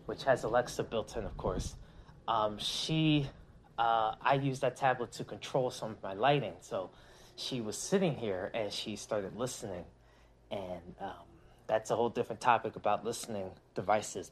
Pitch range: 130-195 Hz